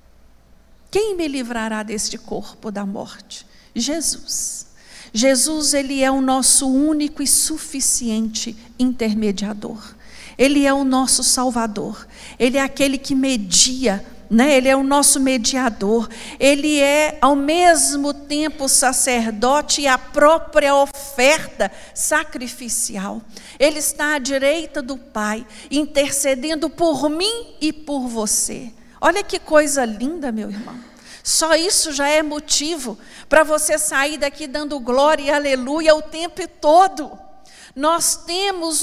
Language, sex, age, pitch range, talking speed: Portuguese, female, 50-69, 235-310 Hz, 125 wpm